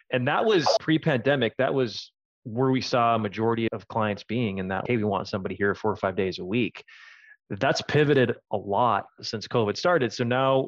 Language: English